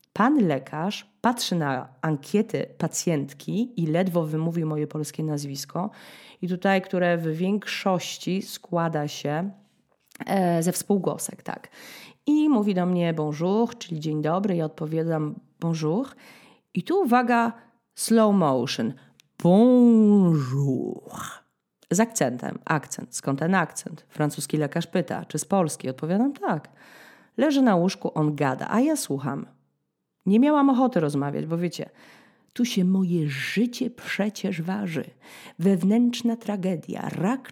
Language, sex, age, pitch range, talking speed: Polish, female, 30-49, 155-230 Hz, 120 wpm